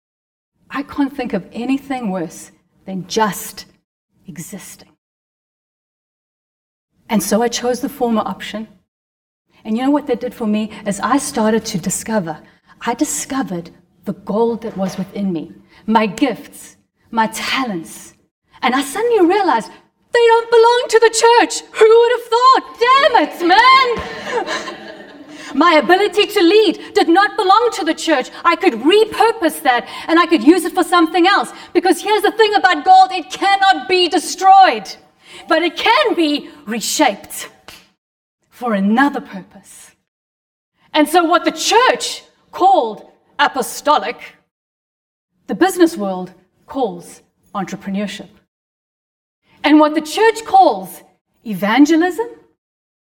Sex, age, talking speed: female, 30-49, 130 wpm